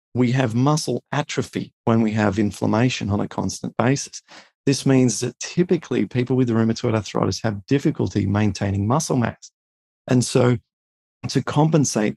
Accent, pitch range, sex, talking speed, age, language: Australian, 105-135 Hz, male, 145 wpm, 40-59, English